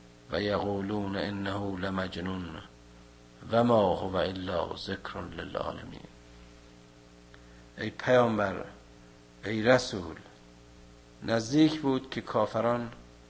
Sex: male